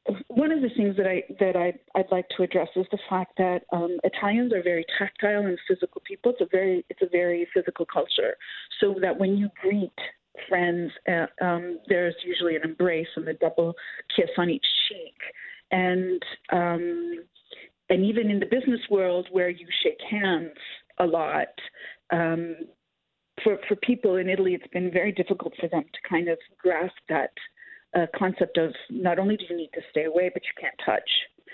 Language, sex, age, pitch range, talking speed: English, female, 40-59, 170-215 Hz, 185 wpm